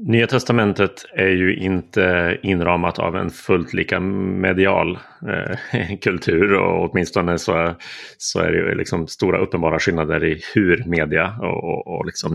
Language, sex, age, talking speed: Swedish, male, 30-49, 155 wpm